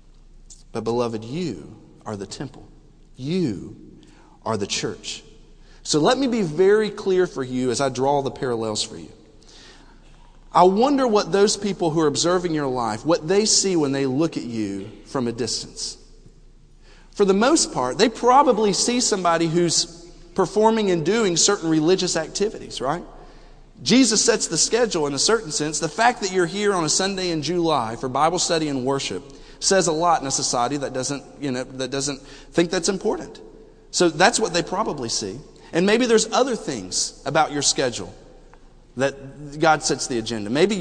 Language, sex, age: English, male, 40-59